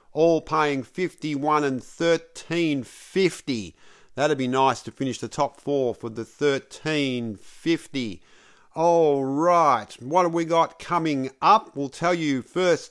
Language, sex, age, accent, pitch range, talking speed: English, male, 50-69, Australian, 135-165 Hz, 135 wpm